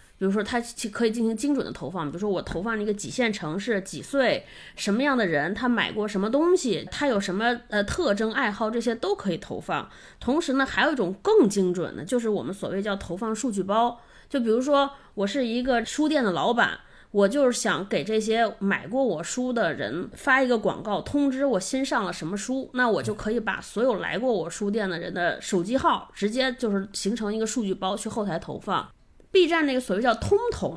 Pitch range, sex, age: 200-265 Hz, female, 20-39